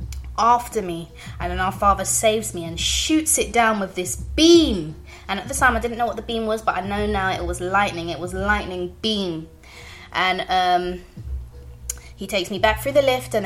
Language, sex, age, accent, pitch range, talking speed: English, female, 20-39, British, 165-215 Hz, 210 wpm